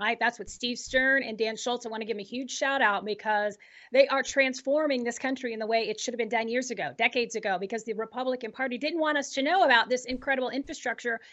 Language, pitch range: English, 225-280 Hz